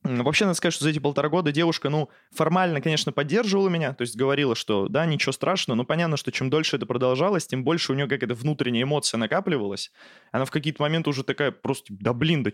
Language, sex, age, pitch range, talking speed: Russian, male, 20-39, 130-165 Hz, 230 wpm